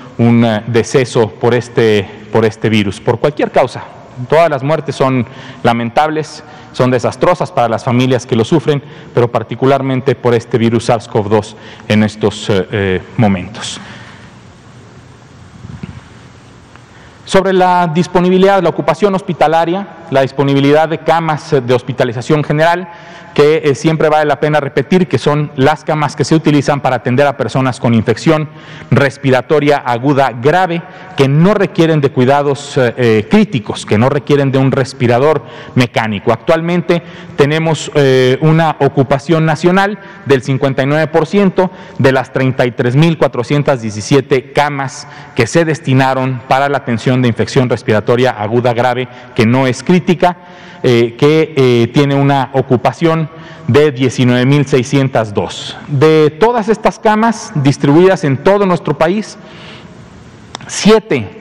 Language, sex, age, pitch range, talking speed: Spanish, male, 40-59, 125-160 Hz, 125 wpm